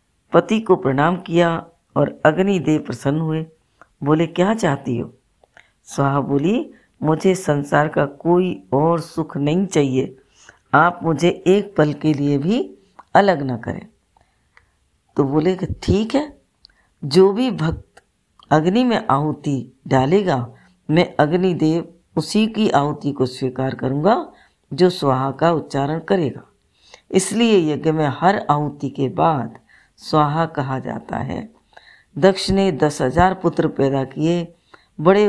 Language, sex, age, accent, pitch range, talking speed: Hindi, female, 60-79, native, 150-185 Hz, 125 wpm